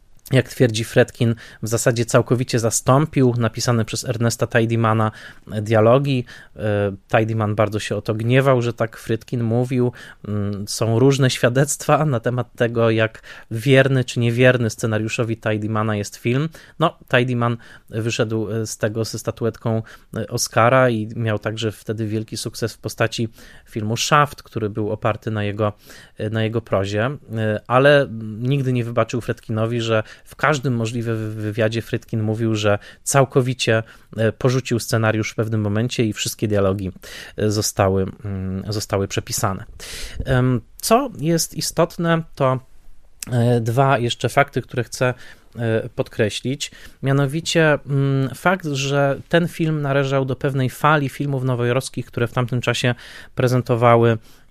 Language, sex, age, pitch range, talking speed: Polish, male, 20-39, 110-130 Hz, 125 wpm